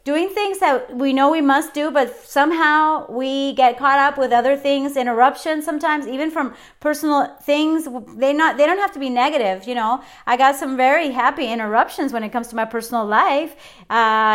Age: 30-49